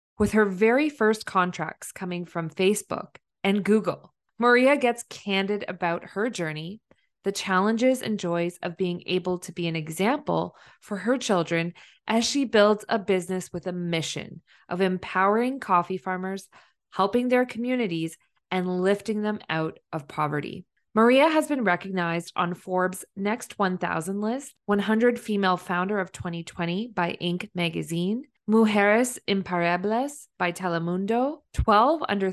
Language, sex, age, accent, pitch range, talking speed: English, female, 20-39, American, 175-220 Hz, 135 wpm